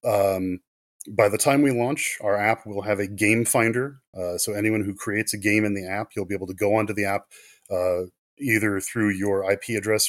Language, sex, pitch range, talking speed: English, male, 100-110 Hz, 225 wpm